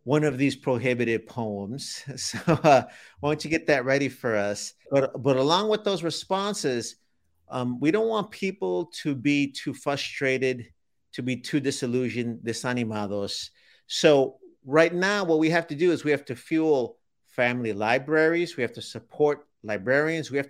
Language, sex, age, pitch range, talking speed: English, male, 50-69, 120-150 Hz, 165 wpm